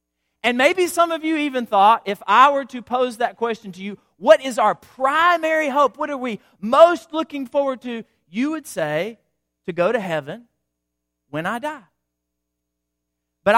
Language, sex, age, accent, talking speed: English, male, 40-59, American, 170 wpm